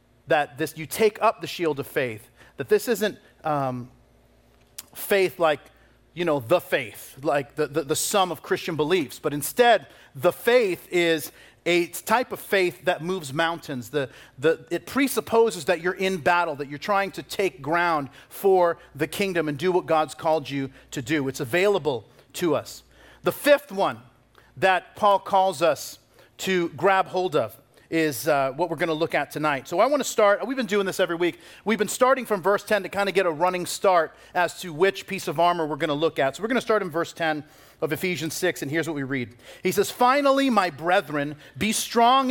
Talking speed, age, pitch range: 205 wpm, 40-59, 150-200 Hz